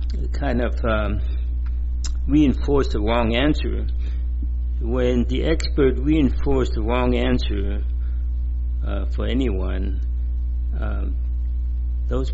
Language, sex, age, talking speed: English, male, 60-79, 90 wpm